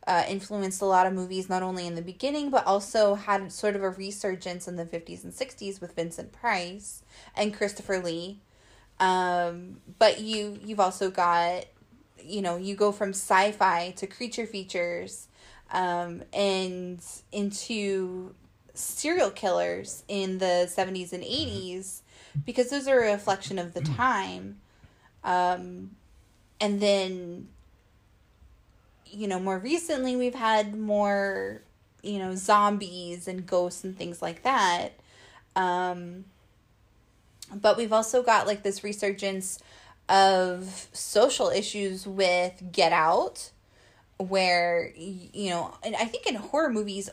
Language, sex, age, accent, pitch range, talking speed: English, female, 20-39, American, 175-205 Hz, 130 wpm